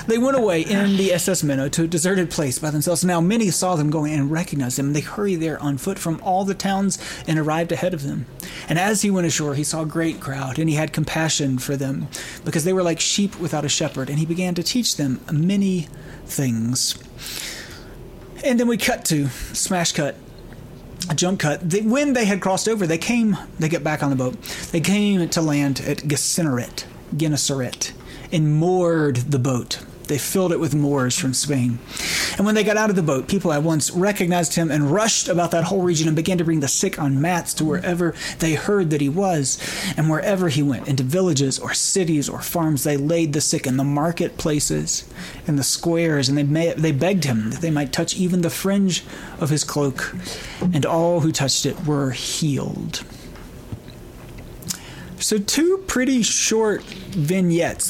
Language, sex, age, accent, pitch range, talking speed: English, male, 30-49, American, 145-185 Hz, 195 wpm